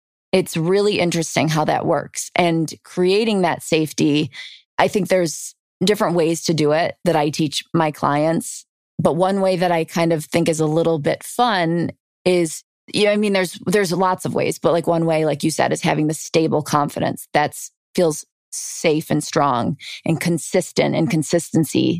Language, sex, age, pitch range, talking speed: English, female, 20-39, 155-185 Hz, 185 wpm